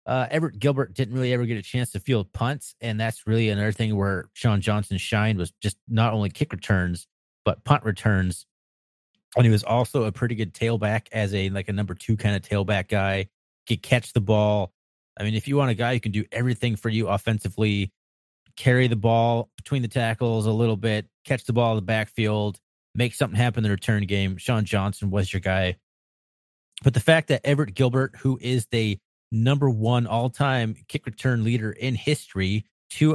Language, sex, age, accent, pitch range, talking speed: English, male, 30-49, American, 100-125 Hz, 205 wpm